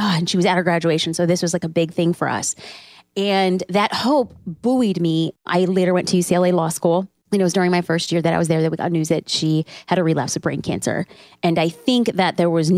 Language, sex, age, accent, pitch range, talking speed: English, female, 30-49, American, 165-195 Hz, 265 wpm